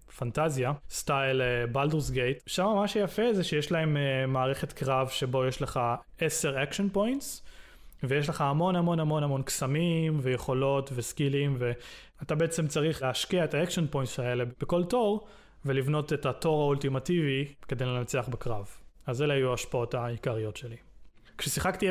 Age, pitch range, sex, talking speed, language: 20-39, 125-160 Hz, male, 145 wpm, Hebrew